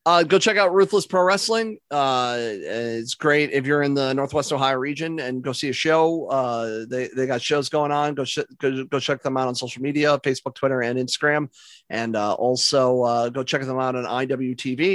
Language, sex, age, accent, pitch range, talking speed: English, male, 30-49, American, 125-150 Hz, 215 wpm